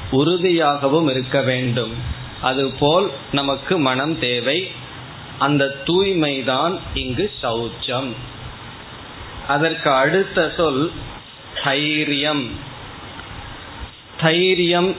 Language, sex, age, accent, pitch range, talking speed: Tamil, male, 20-39, native, 130-165 Hz, 60 wpm